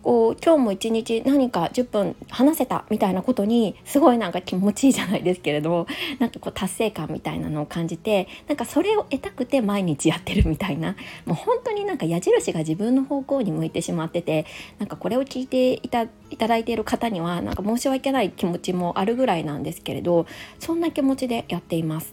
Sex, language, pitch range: female, Japanese, 175-270 Hz